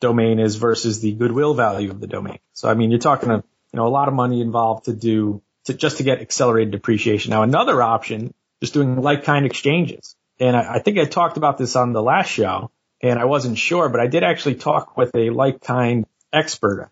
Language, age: English, 30-49